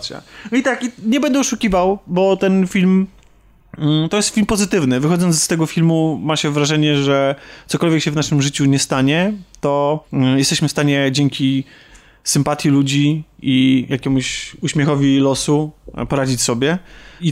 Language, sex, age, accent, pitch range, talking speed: Polish, male, 20-39, native, 140-175 Hz, 145 wpm